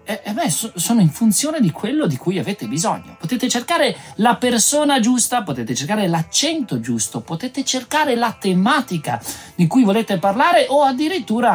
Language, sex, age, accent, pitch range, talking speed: Italian, male, 30-49, native, 155-240 Hz, 150 wpm